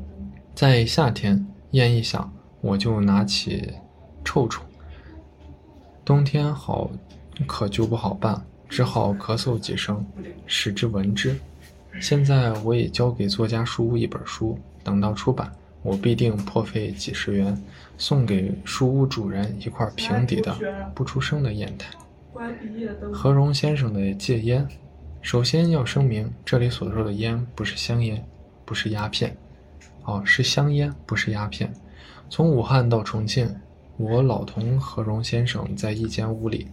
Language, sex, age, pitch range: Chinese, male, 20-39, 100-125 Hz